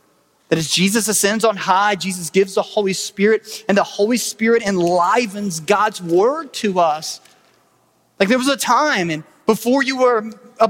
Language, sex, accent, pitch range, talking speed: English, male, American, 195-245 Hz, 170 wpm